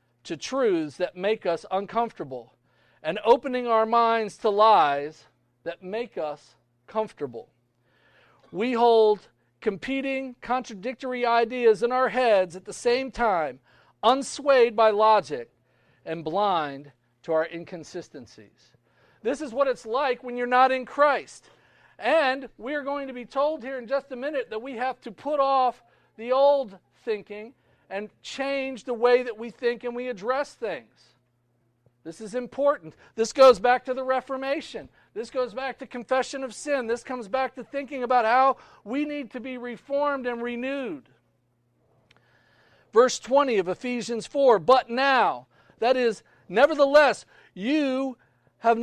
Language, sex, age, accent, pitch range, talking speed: English, male, 40-59, American, 200-265 Hz, 145 wpm